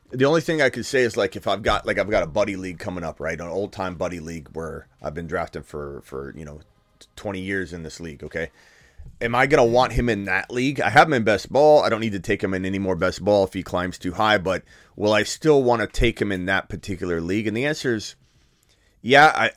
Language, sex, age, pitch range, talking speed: English, male, 30-49, 90-115 Hz, 265 wpm